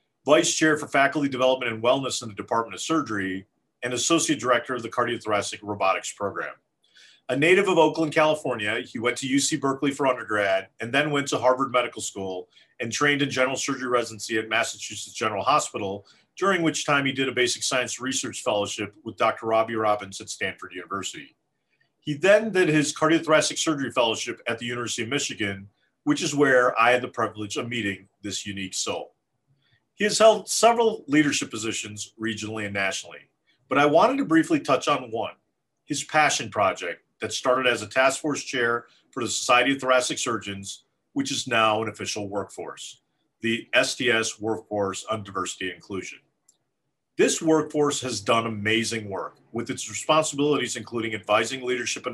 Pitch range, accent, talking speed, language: 110-145 Hz, American, 170 wpm, English